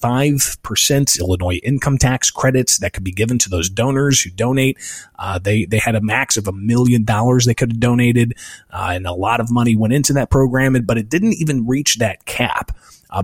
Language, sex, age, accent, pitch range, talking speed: English, male, 30-49, American, 100-130 Hz, 205 wpm